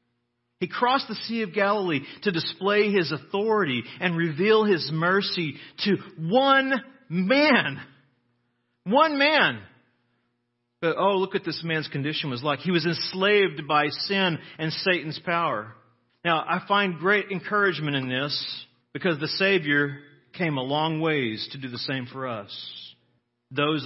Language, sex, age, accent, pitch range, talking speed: English, male, 40-59, American, 140-195 Hz, 145 wpm